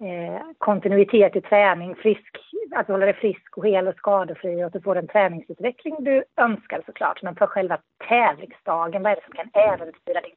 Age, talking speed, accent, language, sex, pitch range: 30-49, 190 wpm, native, Swedish, female, 175-225 Hz